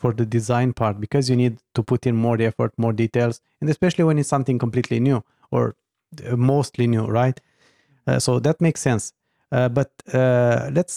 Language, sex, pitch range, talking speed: English, male, 120-155 Hz, 185 wpm